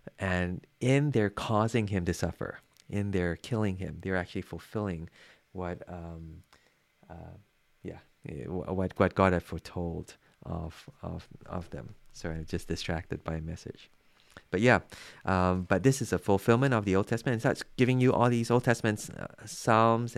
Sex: male